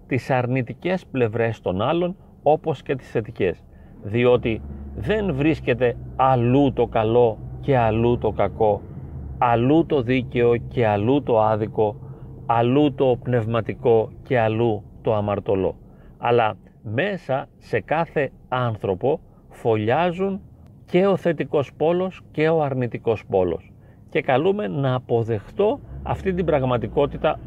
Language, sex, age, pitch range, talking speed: Greek, male, 40-59, 115-160 Hz, 120 wpm